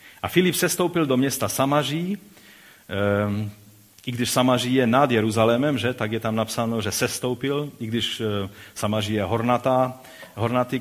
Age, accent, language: 40-59, native, Czech